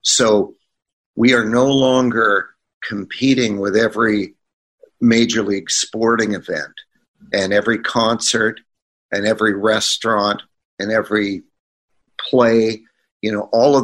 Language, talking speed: English, 110 wpm